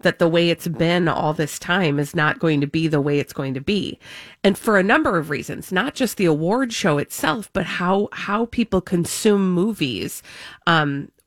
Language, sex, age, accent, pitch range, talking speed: English, female, 30-49, American, 155-200 Hz, 200 wpm